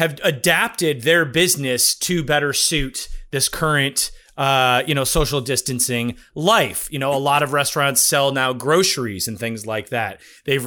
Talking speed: 165 wpm